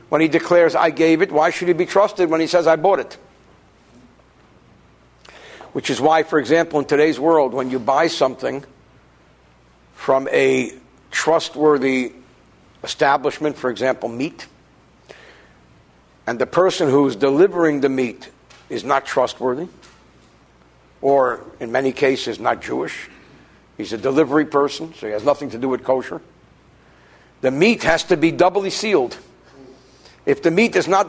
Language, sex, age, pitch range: English, male, 60-79, 135-180 Hz